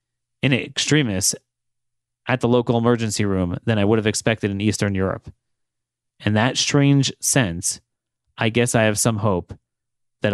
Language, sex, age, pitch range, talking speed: English, male, 30-49, 110-130 Hz, 150 wpm